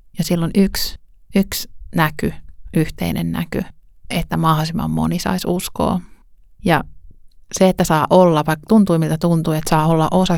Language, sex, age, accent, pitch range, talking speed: Finnish, male, 30-49, native, 160-185 Hz, 145 wpm